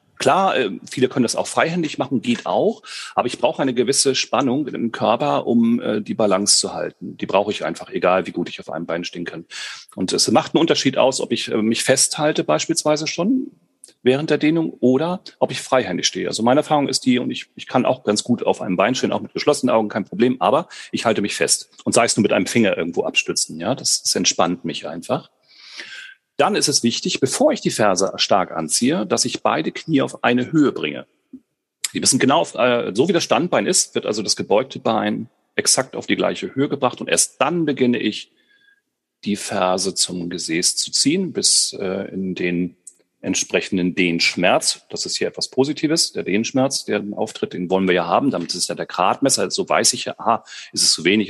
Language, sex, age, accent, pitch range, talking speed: German, male, 40-59, German, 105-150 Hz, 210 wpm